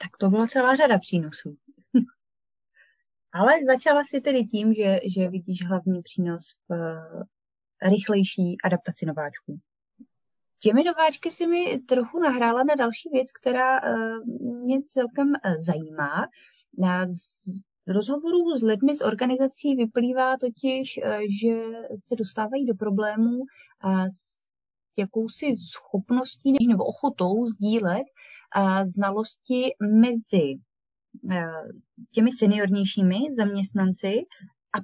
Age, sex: 20-39, female